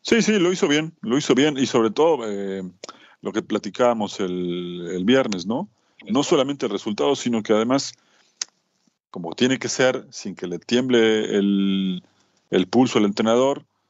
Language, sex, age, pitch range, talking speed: Spanish, male, 40-59, 100-130 Hz, 170 wpm